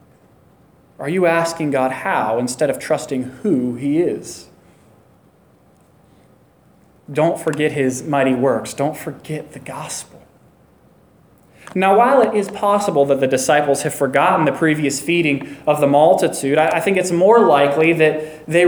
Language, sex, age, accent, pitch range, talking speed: English, male, 20-39, American, 145-210 Hz, 140 wpm